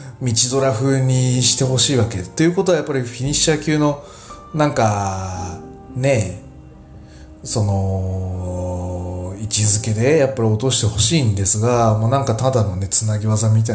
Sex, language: male, Japanese